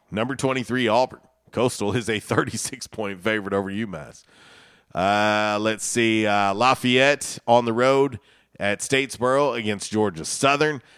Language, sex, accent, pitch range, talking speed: English, male, American, 100-120 Hz, 125 wpm